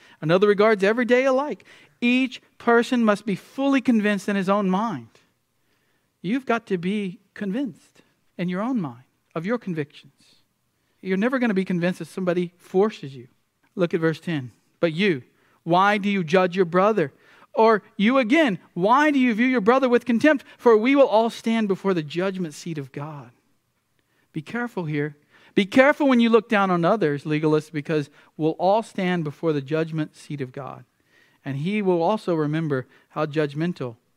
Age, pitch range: 50-69, 155-235 Hz